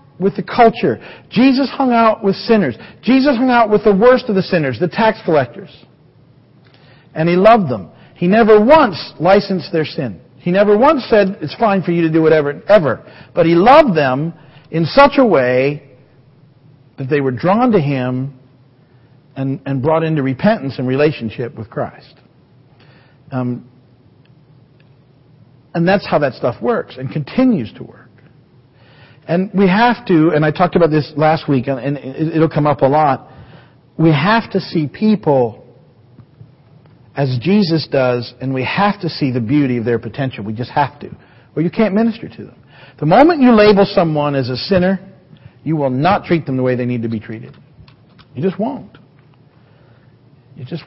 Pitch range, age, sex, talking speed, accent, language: 130-185 Hz, 50-69, male, 170 wpm, American, English